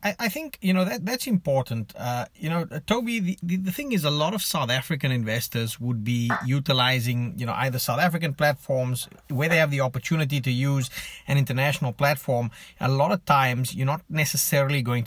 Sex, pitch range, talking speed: male, 130-160 Hz, 190 wpm